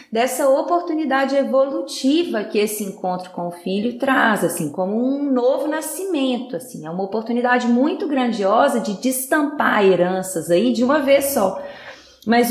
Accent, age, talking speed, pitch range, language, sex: Brazilian, 20-39, 145 wpm, 210-275 Hz, Portuguese, female